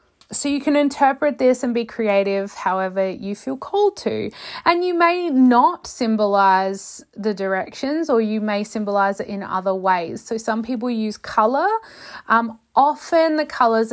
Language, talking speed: English, 155 wpm